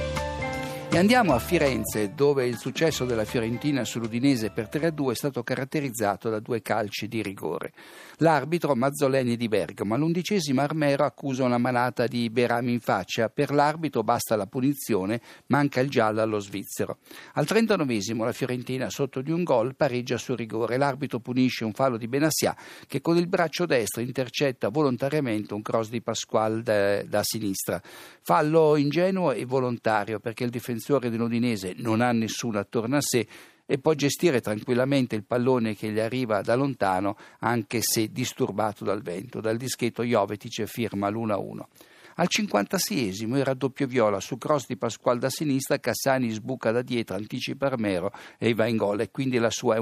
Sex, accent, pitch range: male, native, 110-140 Hz